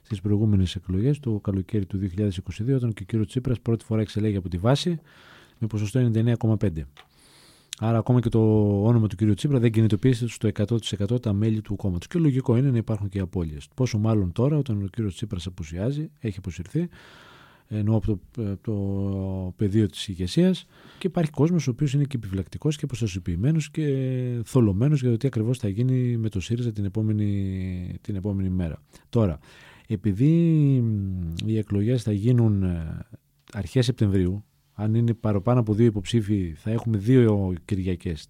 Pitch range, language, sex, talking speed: 100-125 Hz, Greek, male, 165 wpm